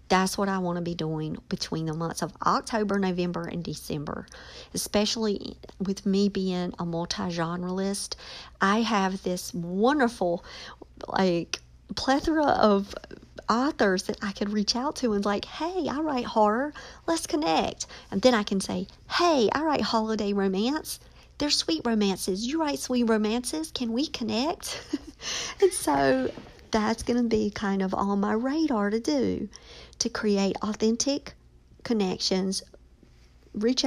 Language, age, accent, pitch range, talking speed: English, 50-69, American, 190-245 Hz, 145 wpm